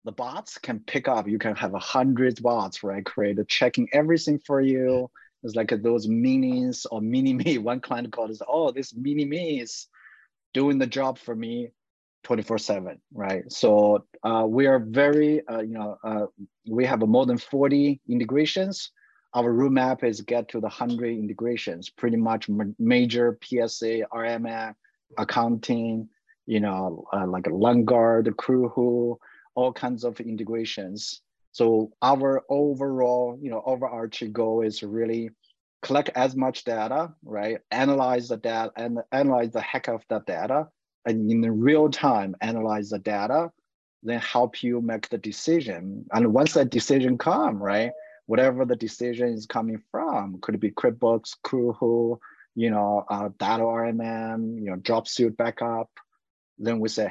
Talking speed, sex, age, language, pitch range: 160 wpm, male, 30-49, English, 110-130 Hz